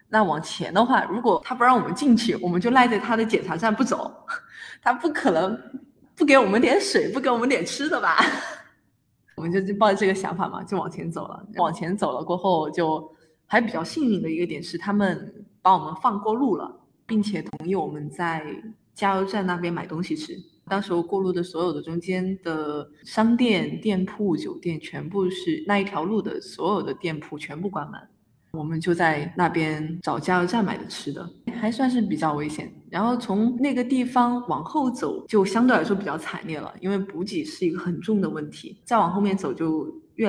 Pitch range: 160-225 Hz